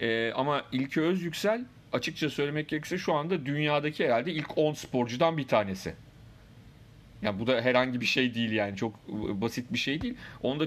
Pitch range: 120-155 Hz